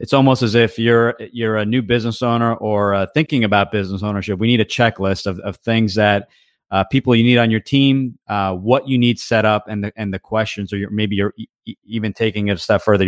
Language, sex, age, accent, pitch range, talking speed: English, male, 30-49, American, 100-120 Hz, 245 wpm